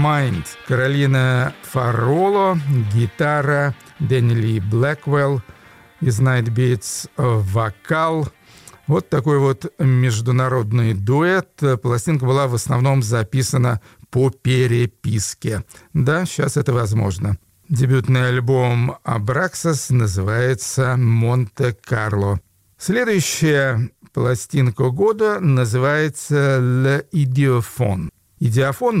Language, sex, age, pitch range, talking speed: Russian, male, 50-69, 115-145 Hz, 80 wpm